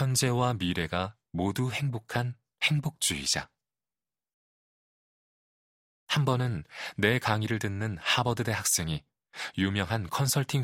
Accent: native